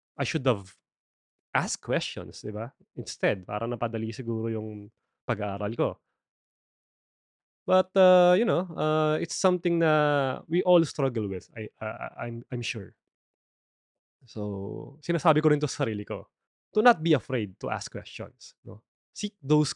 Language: Filipino